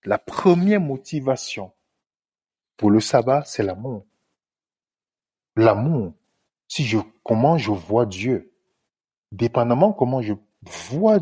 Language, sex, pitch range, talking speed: French, male, 120-155 Hz, 100 wpm